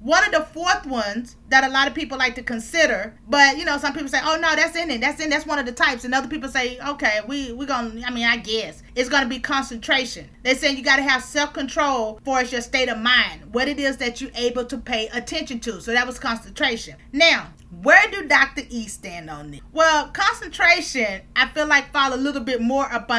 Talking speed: 245 wpm